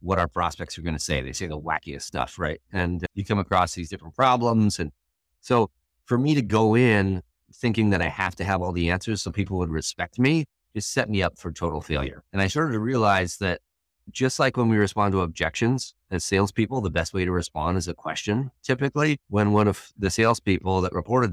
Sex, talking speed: male, 225 wpm